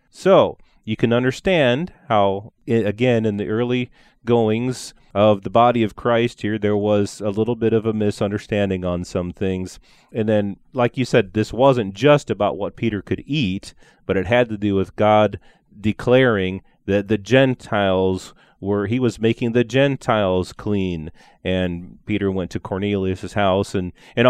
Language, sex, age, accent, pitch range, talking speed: English, male, 30-49, American, 100-125 Hz, 165 wpm